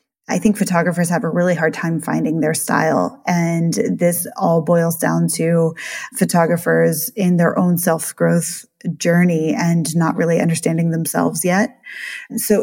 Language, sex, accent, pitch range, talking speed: English, female, American, 170-210 Hz, 145 wpm